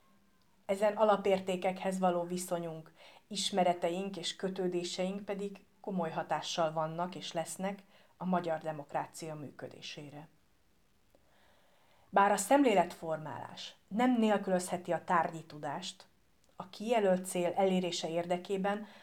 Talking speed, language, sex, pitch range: 95 wpm, Hungarian, female, 175-210 Hz